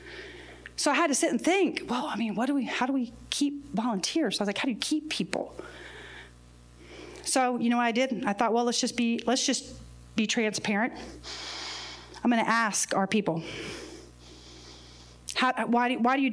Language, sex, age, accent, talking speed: English, female, 40-59, American, 185 wpm